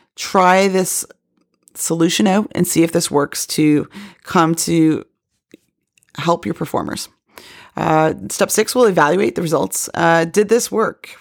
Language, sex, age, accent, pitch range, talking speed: English, female, 30-49, American, 165-195 Hz, 140 wpm